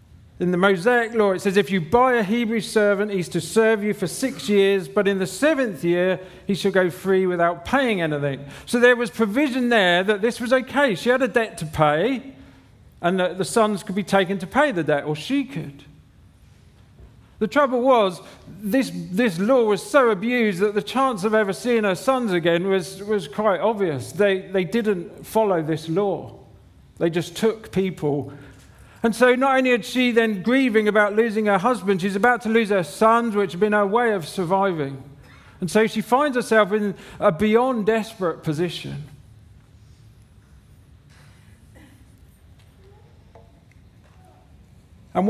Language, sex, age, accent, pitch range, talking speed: English, male, 40-59, British, 170-230 Hz, 170 wpm